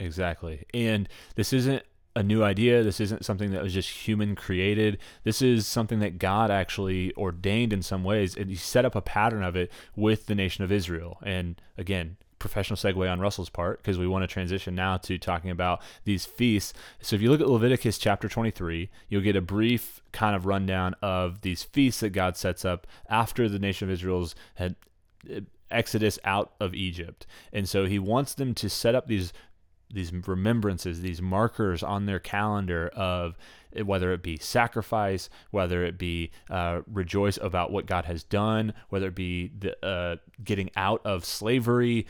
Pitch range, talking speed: 90-110 Hz, 180 wpm